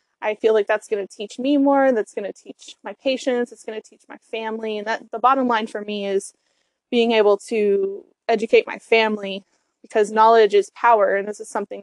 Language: English